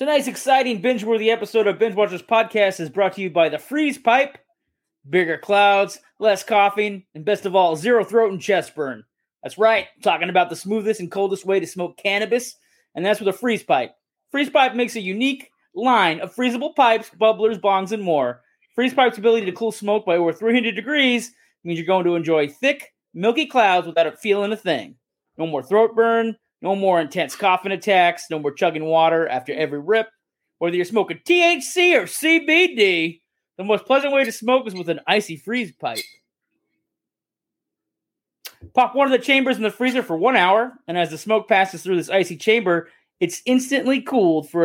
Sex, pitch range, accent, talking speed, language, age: male, 175-245 Hz, American, 190 wpm, English, 30-49